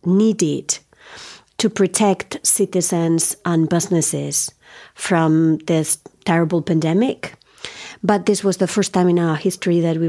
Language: English